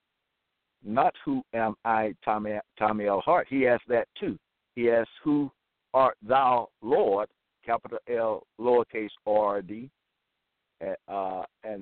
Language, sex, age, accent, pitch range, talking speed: English, male, 60-79, American, 110-165 Hz, 120 wpm